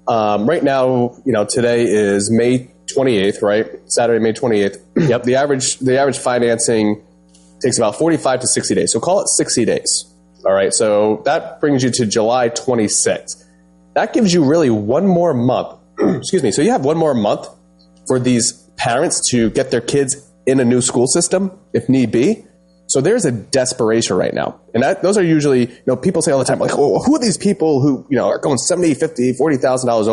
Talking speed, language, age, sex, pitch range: 200 wpm, English, 30-49, male, 100-140 Hz